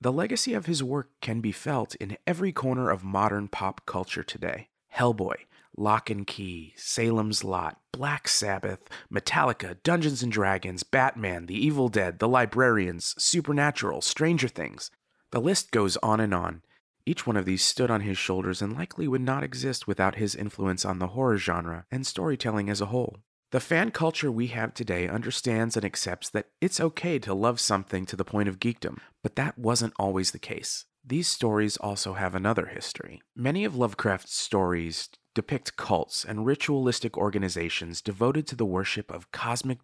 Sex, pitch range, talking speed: male, 95-130 Hz, 175 wpm